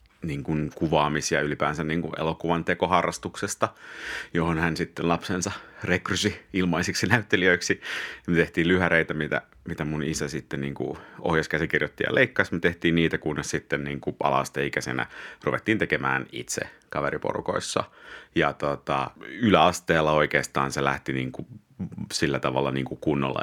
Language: Finnish